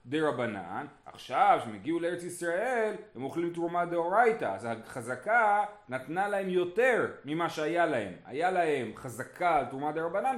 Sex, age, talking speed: male, 30-49, 150 wpm